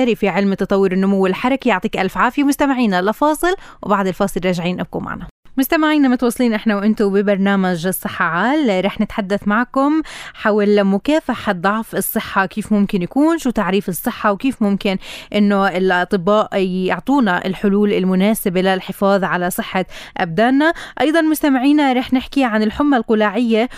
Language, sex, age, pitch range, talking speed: Arabic, female, 20-39, 200-255 Hz, 135 wpm